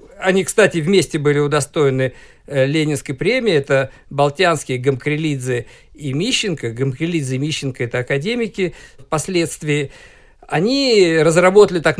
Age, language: 50-69, Russian